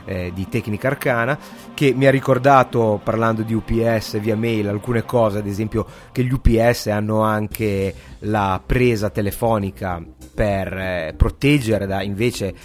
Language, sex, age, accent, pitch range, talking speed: Italian, male, 30-49, native, 95-120 Hz, 140 wpm